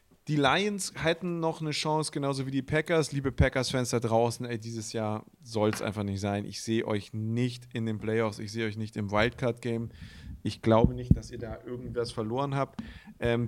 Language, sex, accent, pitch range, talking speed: German, male, German, 110-130 Hz, 200 wpm